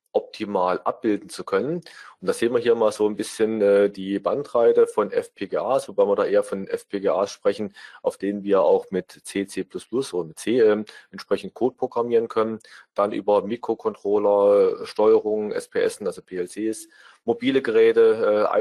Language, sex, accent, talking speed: German, male, German, 160 wpm